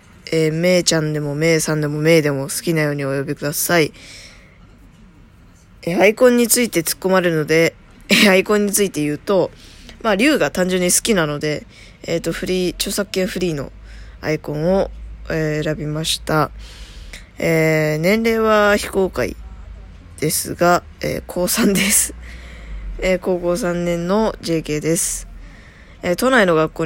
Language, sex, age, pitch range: Japanese, female, 20-39, 150-180 Hz